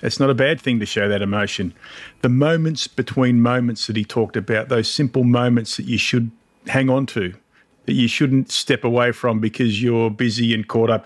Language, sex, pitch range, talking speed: English, male, 115-135 Hz, 205 wpm